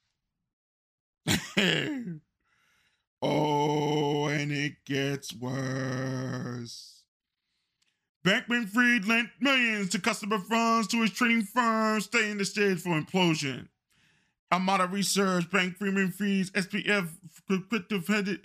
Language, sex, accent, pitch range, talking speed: English, male, American, 150-205 Hz, 95 wpm